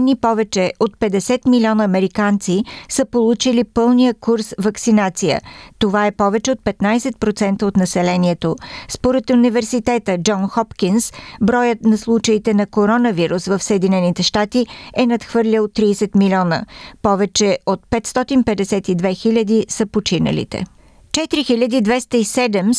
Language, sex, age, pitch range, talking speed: Bulgarian, female, 50-69, 200-235 Hz, 105 wpm